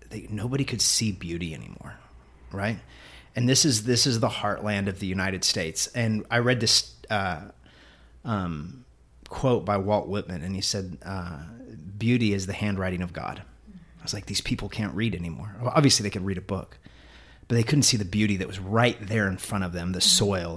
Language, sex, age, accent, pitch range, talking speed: English, male, 30-49, American, 95-120 Hz, 200 wpm